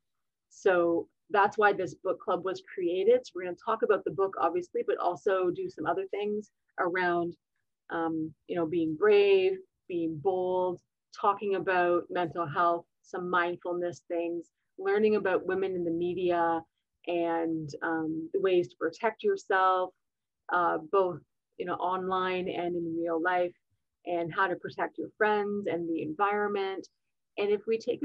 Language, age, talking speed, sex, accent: English, 30-49, 155 wpm, female, American